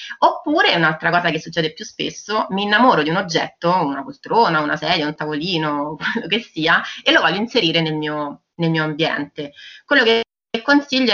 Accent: native